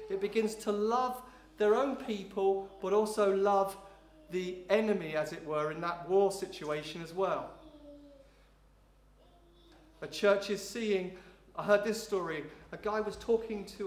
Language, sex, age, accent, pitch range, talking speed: English, male, 40-59, British, 170-215 Hz, 145 wpm